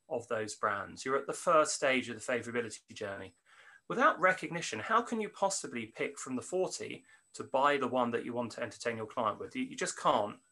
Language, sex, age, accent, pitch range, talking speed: English, male, 30-49, British, 130-195 Hz, 215 wpm